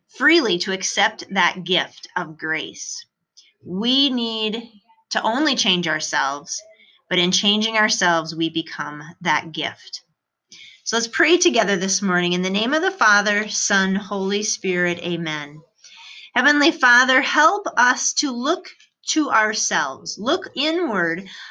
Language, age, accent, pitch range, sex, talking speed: English, 30-49, American, 180-245 Hz, female, 130 wpm